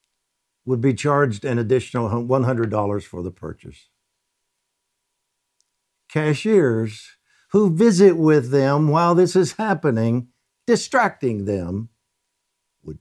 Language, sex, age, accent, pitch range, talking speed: English, male, 60-79, American, 90-145 Hz, 95 wpm